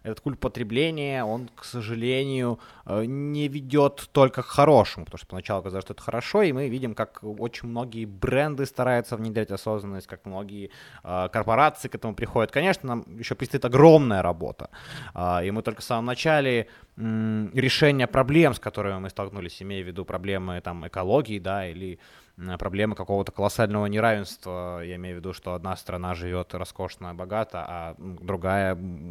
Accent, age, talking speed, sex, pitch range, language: native, 20-39, 155 wpm, male, 95-125 Hz, Ukrainian